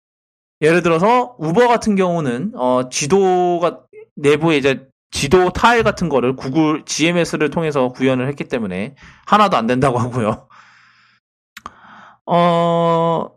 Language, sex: English, male